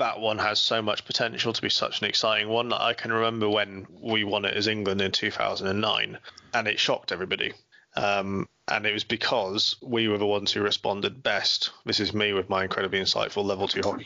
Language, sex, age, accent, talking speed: English, male, 20-39, British, 210 wpm